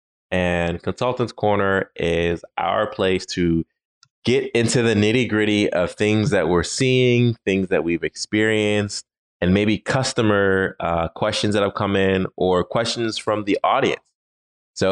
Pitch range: 85-105 Hz